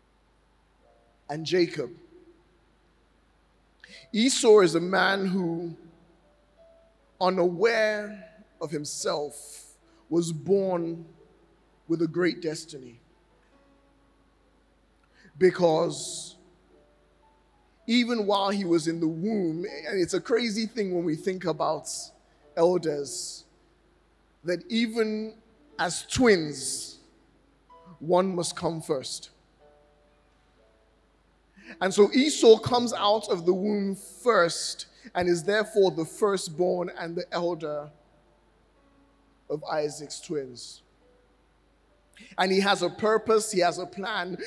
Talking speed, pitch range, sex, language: 95 wpm, 160-205 Hz, male, English